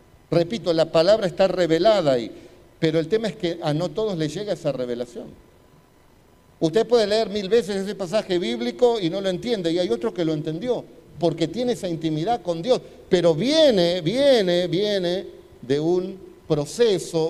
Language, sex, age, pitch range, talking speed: Spanish, male, 50-69, 155-195 Hz, 170 wpm